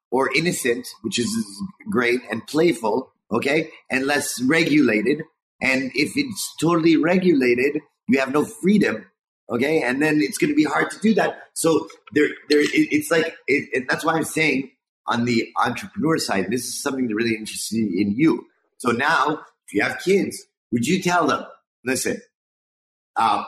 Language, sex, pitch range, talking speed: English, male, 125-180 Hz, 170 wpm